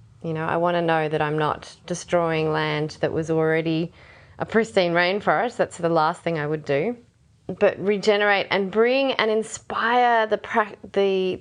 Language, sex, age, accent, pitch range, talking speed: English, female, 20-39, Australian, 170-210 Hz, 175 wpm